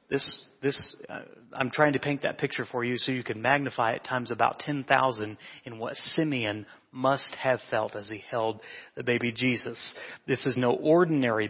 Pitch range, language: 120-155 Hz, English